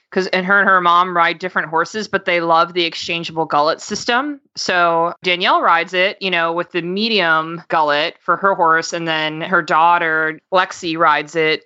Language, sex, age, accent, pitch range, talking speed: English, female, 20-39, American, 170-200 Hz, 185 wpm